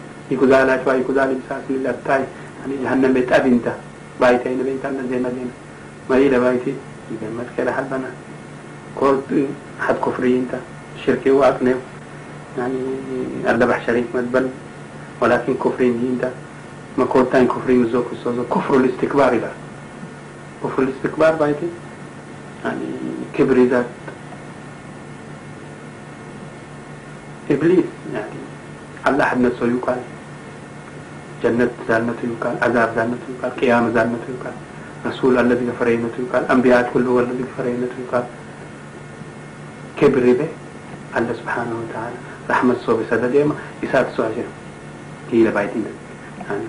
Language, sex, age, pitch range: English, male, 60-79, 85-130 Hz